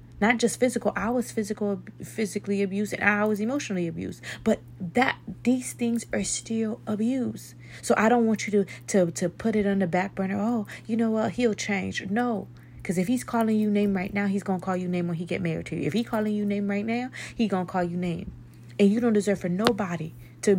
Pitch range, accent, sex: 170-215 Hz, American, female